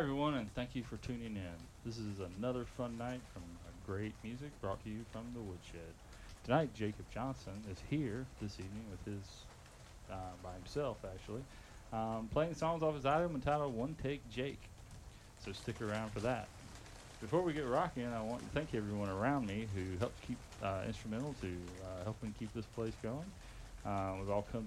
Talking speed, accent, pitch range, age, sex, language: 185 wpm, American, 100-130 Hz, 30-49, male, English